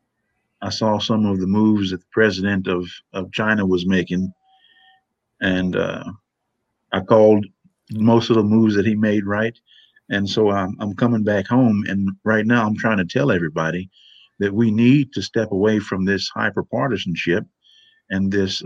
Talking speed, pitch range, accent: 165 wpm, 95-115 Hz, American